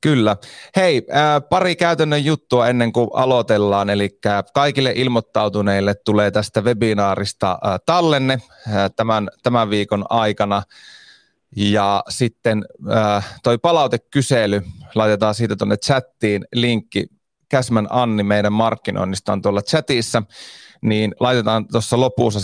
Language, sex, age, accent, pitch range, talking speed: Finnish, male, 30-49, native, 100-125 Hz, 105 wpm